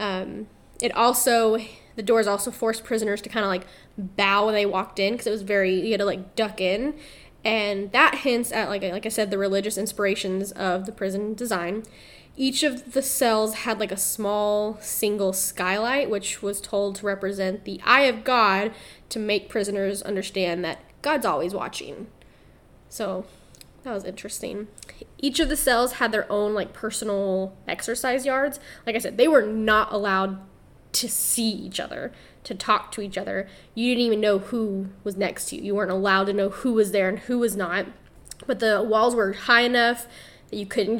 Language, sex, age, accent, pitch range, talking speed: English, female, 10-29, American, 200-230 Hz, 190 wpm